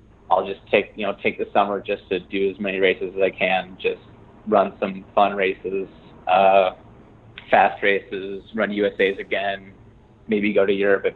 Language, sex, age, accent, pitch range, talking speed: English, male, 20-39, American, 100-110 Hz, 175 wpm